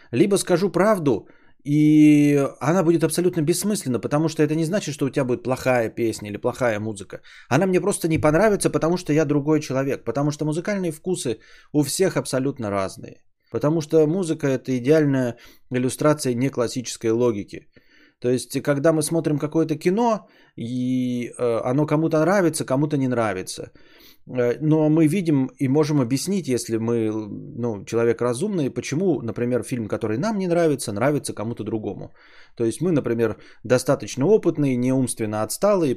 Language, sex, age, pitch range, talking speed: Bulgarian, male, 20-39, 120-160 Hz, 150 wpm